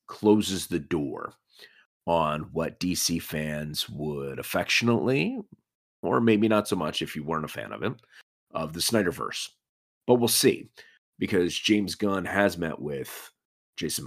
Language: English